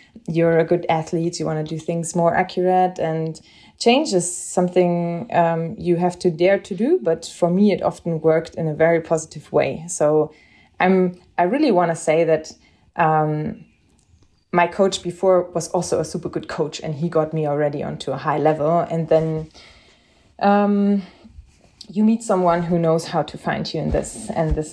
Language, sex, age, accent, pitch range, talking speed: English, female, 20-39, German, 160-180 Hz, 185 wpm